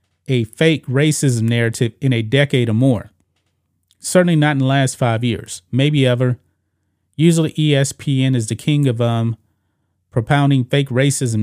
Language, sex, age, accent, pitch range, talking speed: English, male, 30-49, American, 110-135 Hz, 145 wpm